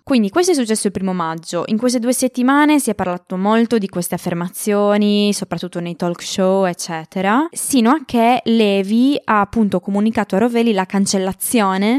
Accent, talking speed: native, 170 wpm